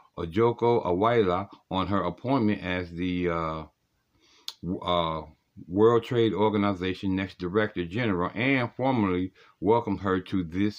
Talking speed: 110 wpm